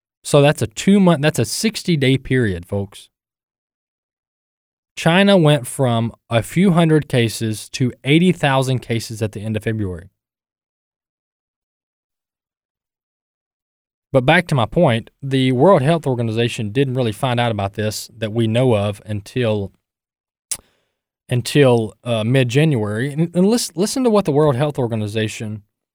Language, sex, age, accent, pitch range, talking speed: English, male, 20-39, American, 110-155 Hz, 140 wpm